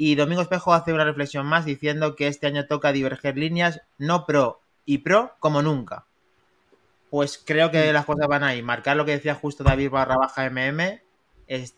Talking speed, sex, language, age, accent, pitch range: 190 wpm, male, Spanish, 30-49, Spanish, 125-150 Hz